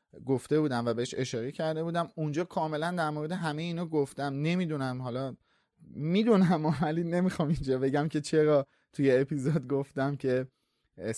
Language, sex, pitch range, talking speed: Persian, male, 125-155 Hz, 150 wpm